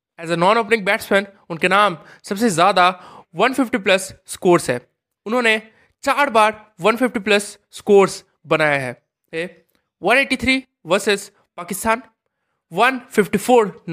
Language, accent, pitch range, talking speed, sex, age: Hindi, native, 165-235 Hz, 110 wpm, male, 20-39